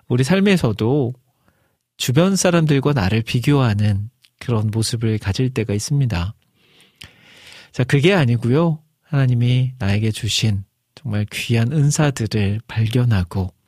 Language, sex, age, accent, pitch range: Korean, male, 40-59, native, 110-135 Hz